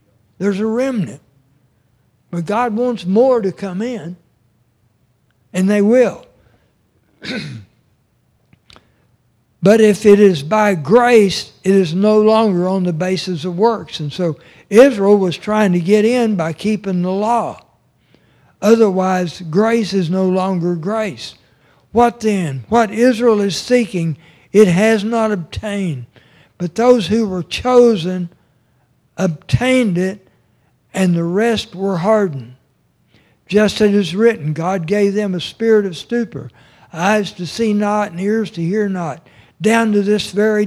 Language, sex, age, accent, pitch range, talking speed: English, male, 60-79, American, 160-215 Hz, 135 wpm